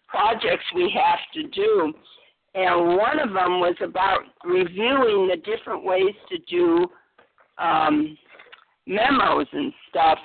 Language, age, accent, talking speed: English, 50-69, American, 125 wpm